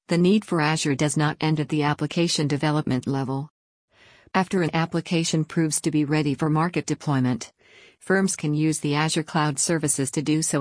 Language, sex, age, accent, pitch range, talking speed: English, female, 50-69, American, 145-165 Hz, 180 wpm